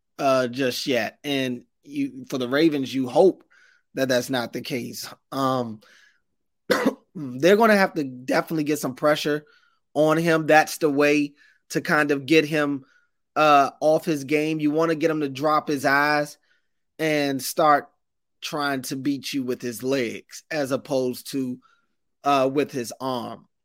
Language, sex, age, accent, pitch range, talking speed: English, male, 20-39, American, 130-150 Hz, 160 wpm